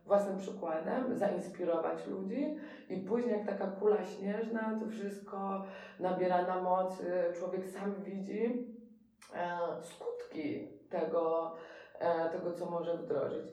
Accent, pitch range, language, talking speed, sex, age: native, 170-205 Hz, Polish, 105 wpm, female, 20-39